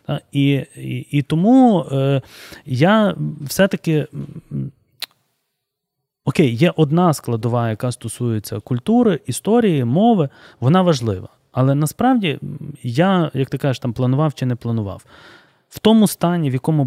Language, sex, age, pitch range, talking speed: Ukrainian, male, 20-39, 125-175 Hz, 120 wpm